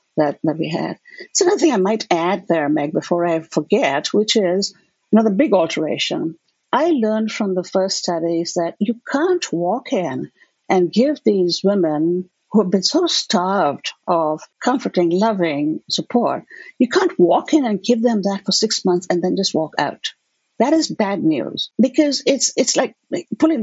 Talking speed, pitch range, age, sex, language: 180 wpm, 175-245 Hz, 60-79, female, English